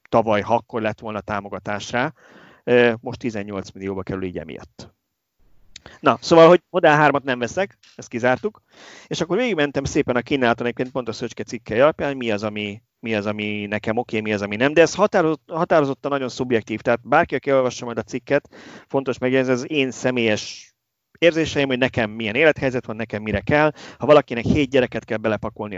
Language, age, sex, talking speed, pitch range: Hungarian, 30-49, male, 185 wpm, 110-135 Hz